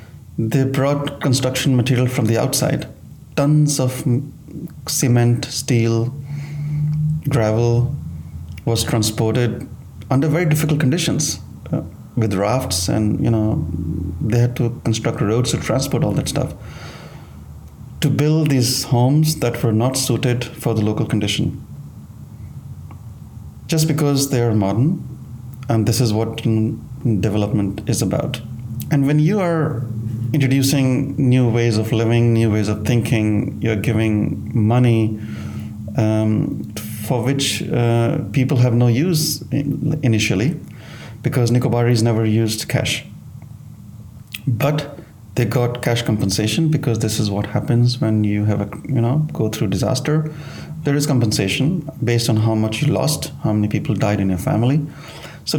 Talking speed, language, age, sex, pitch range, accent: 135 wpm, English, 30-49, male, 110-145 Hz, Indian